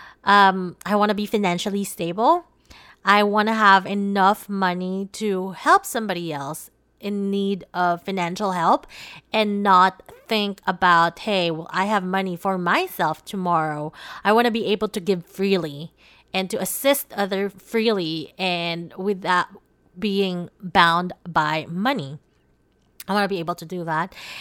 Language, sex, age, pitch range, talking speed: English, female, 20-39, 185-235 Hz, 145 wpm